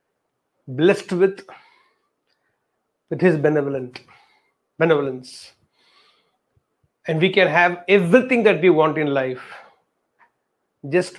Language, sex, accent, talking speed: English, male, Indian, 90 wpm